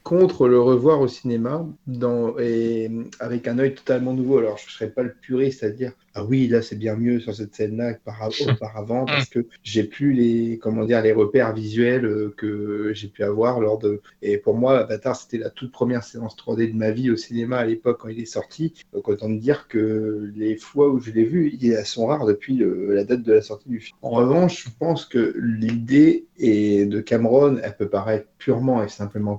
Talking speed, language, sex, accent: 225 wpm, French, male, French